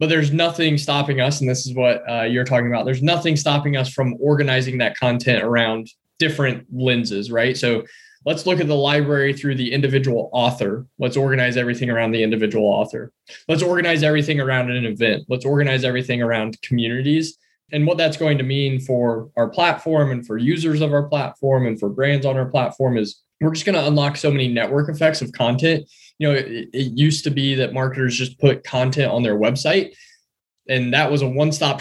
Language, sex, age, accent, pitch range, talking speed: English, male, 10-29, American, 125-150 Hz, 200 wpm